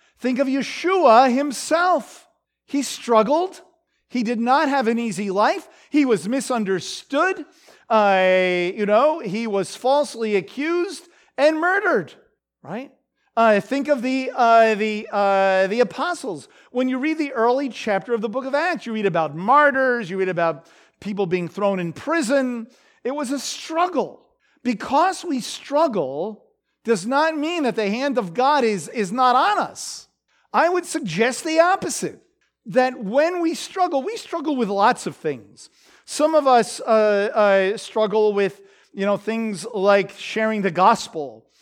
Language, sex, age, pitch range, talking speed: English, male, 50-69, 215-305 Hz, 150 wpm